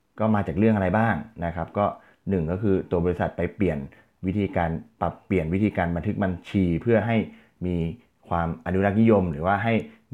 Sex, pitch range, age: male, 85-105 Hz, 20-39